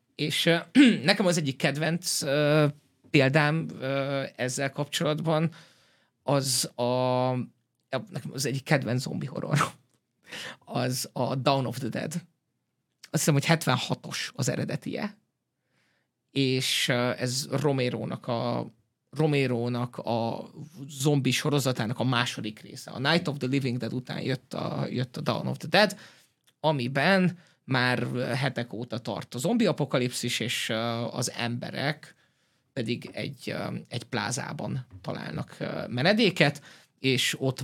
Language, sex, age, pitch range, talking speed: Hungarian, male, 30-49, 125-160 Hz, 120 wpm